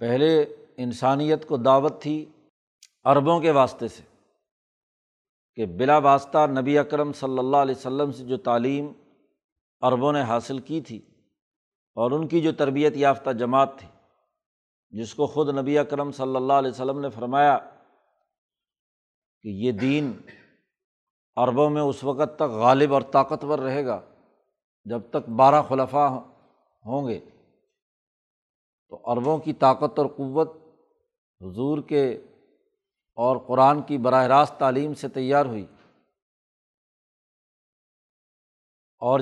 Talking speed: 125 wpm